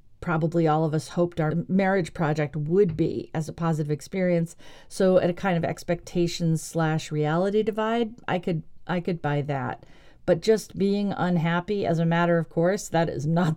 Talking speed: 180 wpm